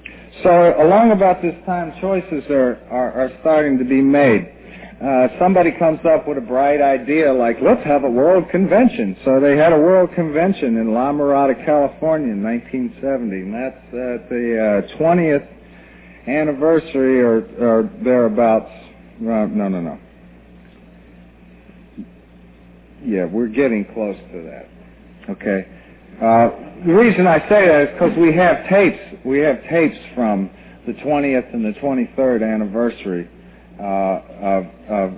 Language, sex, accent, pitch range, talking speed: English, male, American, 95-150 Hz, 145 wpm